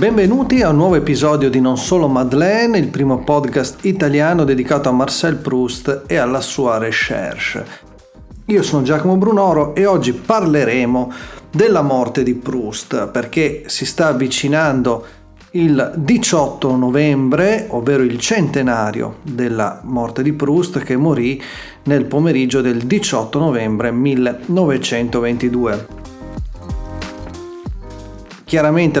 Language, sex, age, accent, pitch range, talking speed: Italian, male, 40-59, native, 125-155 Hz, 115 wpm